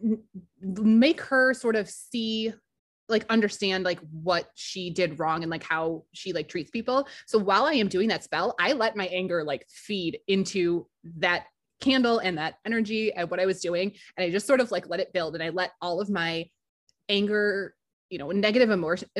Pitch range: 175-225 Hz